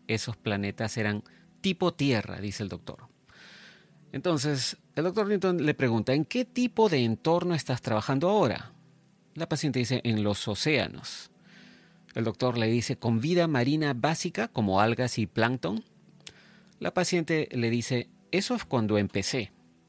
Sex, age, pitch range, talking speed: male, 40-59, 110-170 Hz, 145 wpm